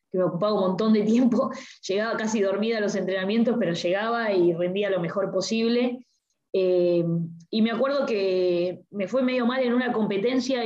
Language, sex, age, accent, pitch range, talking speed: Spanish, female, 20-39, Argentinian, 185-240 Hz, 180 wpm